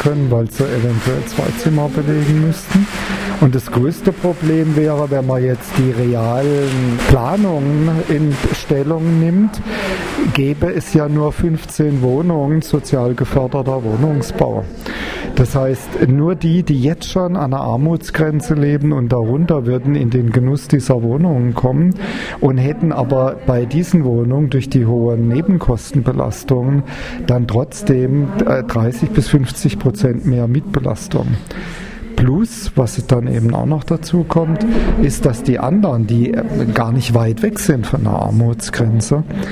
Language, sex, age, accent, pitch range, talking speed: German, male, 40-59, German, 125-160 Hz, 135 wpm